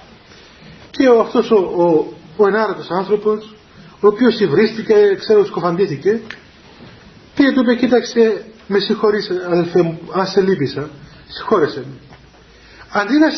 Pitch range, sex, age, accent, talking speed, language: 185-255 Hz, male, 40-59, native, 120 wpm, Greek